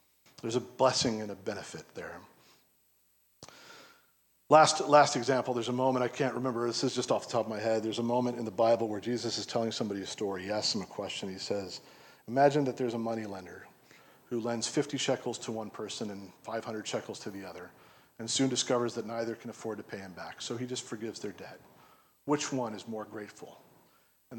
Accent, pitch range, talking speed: American, 110-125 Hz, 215 wpm